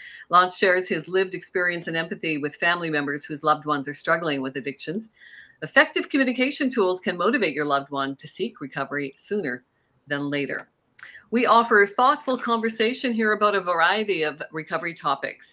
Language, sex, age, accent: English, female, 50-69, American